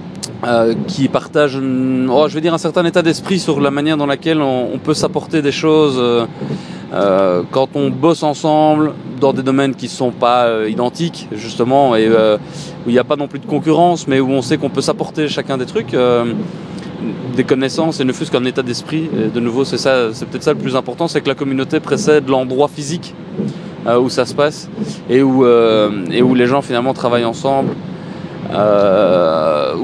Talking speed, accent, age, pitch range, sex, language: 205 wpm, French, 20-39, 125-155 Hz, male, French